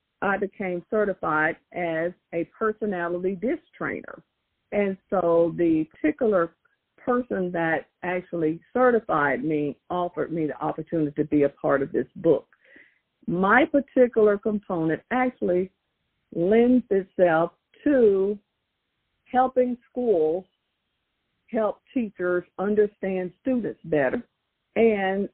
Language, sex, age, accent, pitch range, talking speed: English, female, 50-69, American, 165-210 Hz, 100 wpm